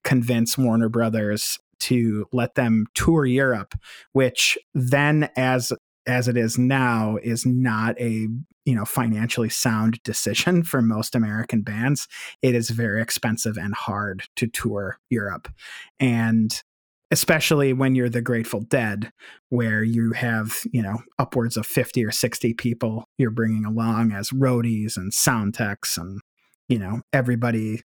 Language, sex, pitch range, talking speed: English, male, 115-135 Hz, 140 wpm